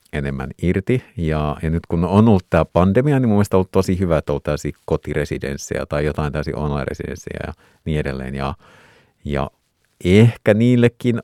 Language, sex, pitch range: Finnish, male, 75-95 Hz